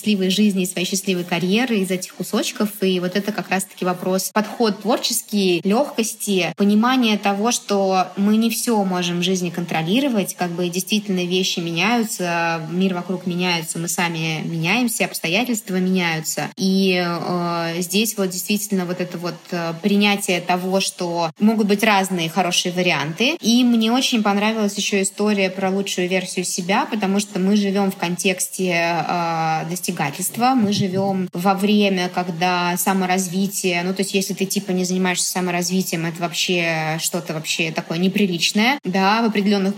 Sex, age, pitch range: female, 20-39, 175-205 Hz